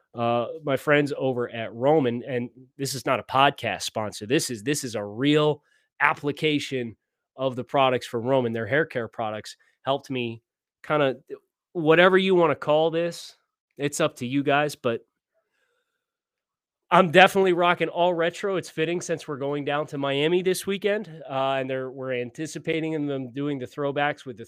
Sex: male